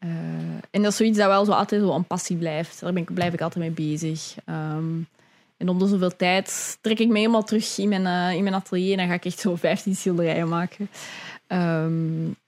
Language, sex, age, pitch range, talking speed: Dutch, female, 20-39, 175-210 Hz, 225 wpm